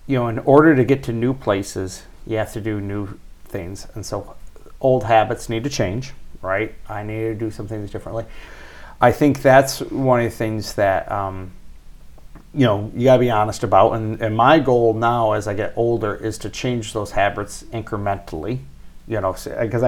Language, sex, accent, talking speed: English, male, American, 195 wpm